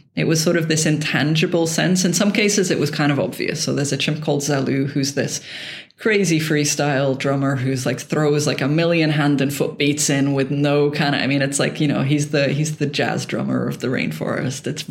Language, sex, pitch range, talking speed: English, female, 145-175 Hz, 230 wpm